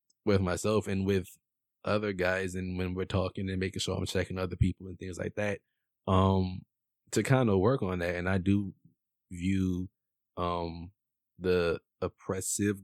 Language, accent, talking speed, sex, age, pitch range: English, American, 165 wpm, male, 20-39, 90-105 Hz